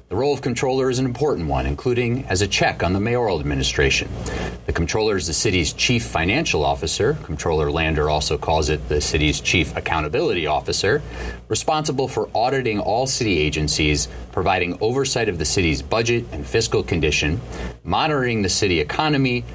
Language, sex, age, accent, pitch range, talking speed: English, male, 30-49, American, 75-115 Hz, 165 wpm